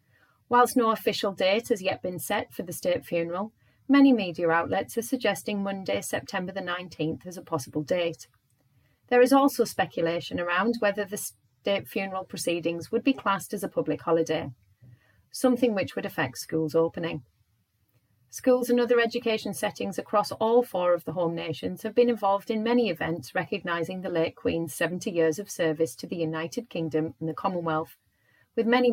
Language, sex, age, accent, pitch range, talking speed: English, female, 30-49, British, 160-220 Hz, 170 wpm